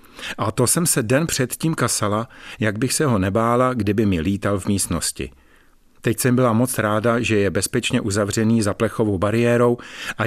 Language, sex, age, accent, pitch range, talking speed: Czech, male, 50-69, native, 100-120 Hz, 175 wpm